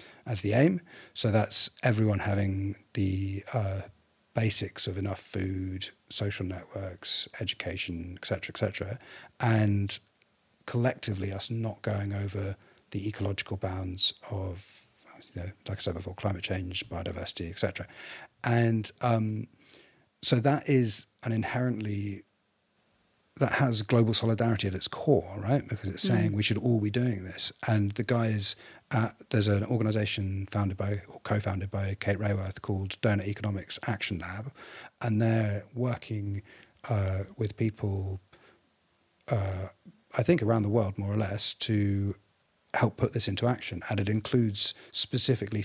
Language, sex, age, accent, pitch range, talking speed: English, male, 40-59, British, 100-115 Hz, 140 wpm